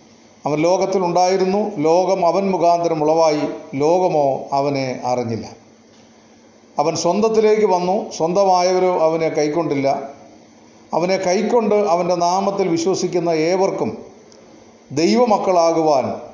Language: Malayalam